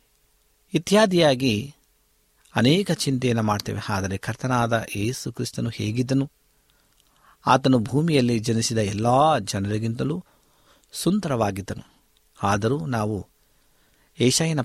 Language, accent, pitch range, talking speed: Kannada, native, 110-140 Hz, 75 wpm